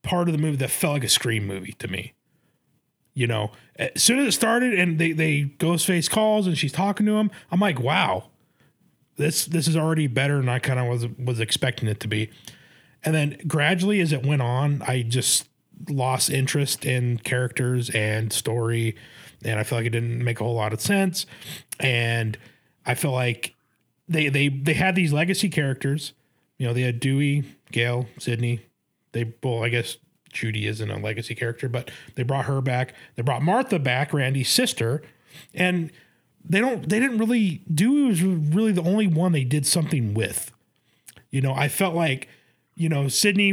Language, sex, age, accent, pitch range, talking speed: English, male, 30-49, American, 120-170 Hz, 190 wpm